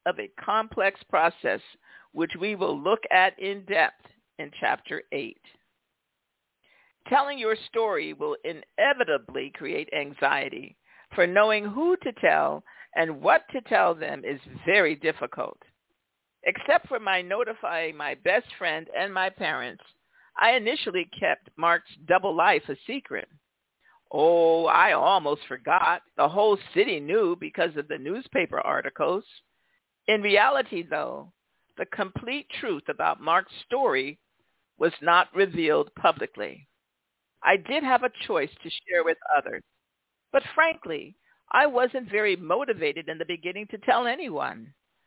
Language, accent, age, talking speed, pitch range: English, American, 50-69, 130 wpm, 170-285 Hz